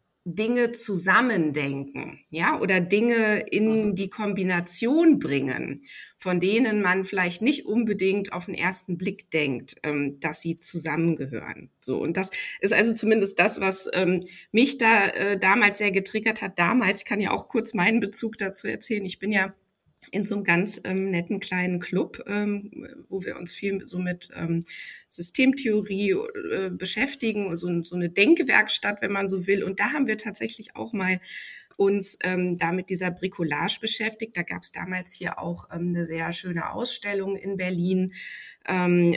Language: German